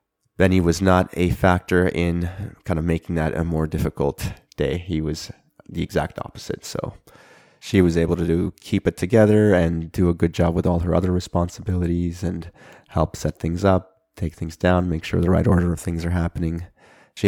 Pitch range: 80-90 Hz